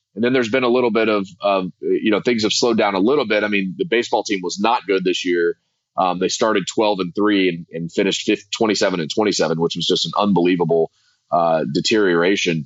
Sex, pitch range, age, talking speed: male, 100-115 Hz, 30-49, 225 wpm